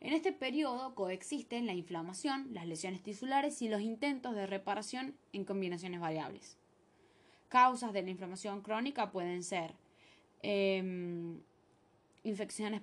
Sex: female